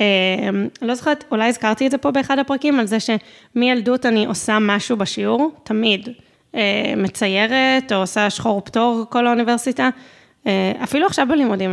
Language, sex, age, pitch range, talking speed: Hebrew, female, 20-39, 225-275 Hz, 155 wpm